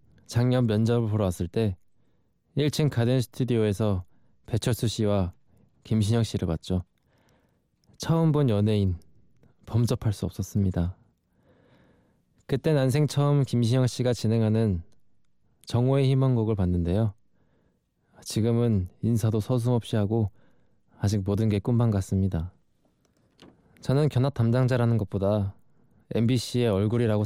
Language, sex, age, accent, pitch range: Korean, male, 20-39, native, 100-125 Hz